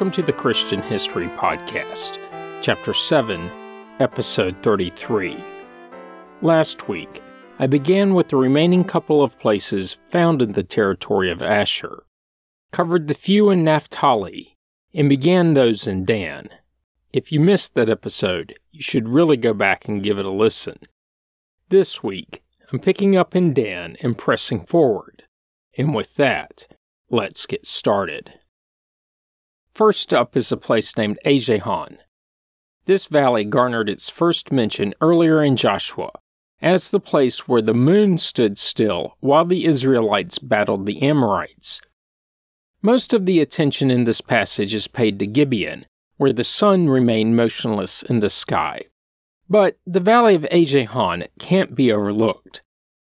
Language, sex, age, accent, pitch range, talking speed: English, male, 40-59, American, 110-180 Hz, 140 wpm